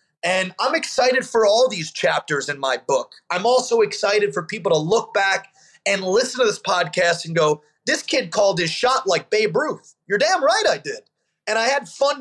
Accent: American